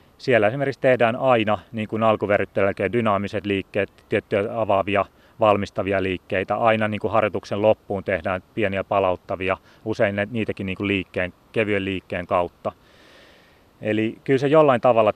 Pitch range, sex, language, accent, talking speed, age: 100-125 Hz, male, Finnish, native, 125 wpm, 30-49